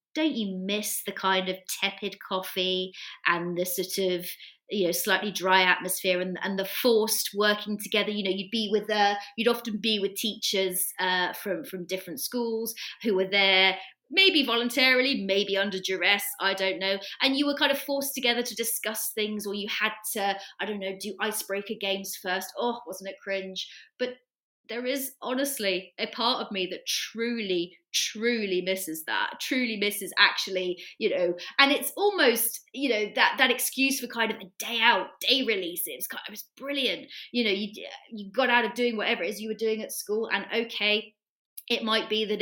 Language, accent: English, British